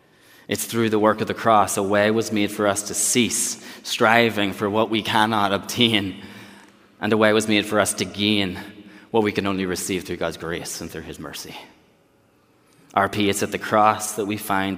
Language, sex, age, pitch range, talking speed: English, male, 20-39, 95-110 Hz, 205 wpm